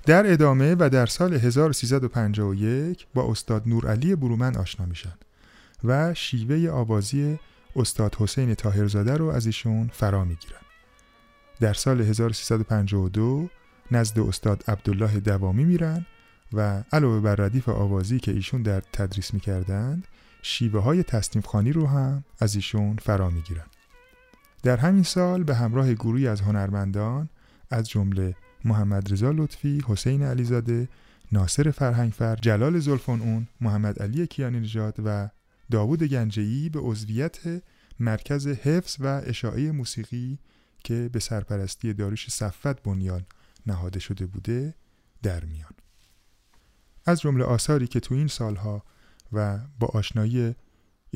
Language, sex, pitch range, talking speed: Persian, male, 105-135 Hz, 125 wpm